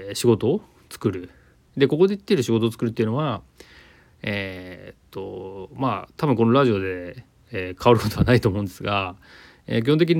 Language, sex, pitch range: Japanese, male, 95-125 Hz